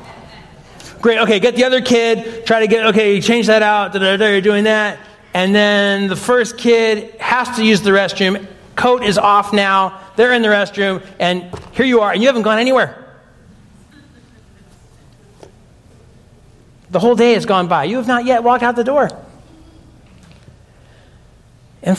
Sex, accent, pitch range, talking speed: male, American, 170-230 Hz, 165 wpm